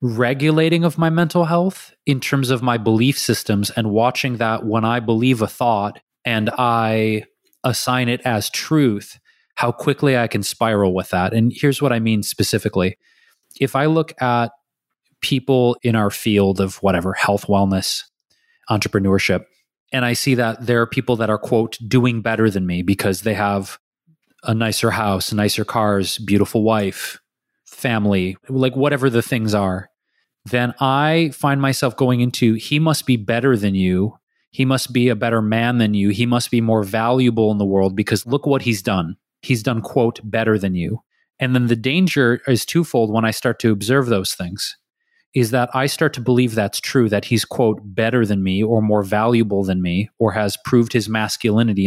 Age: 20-39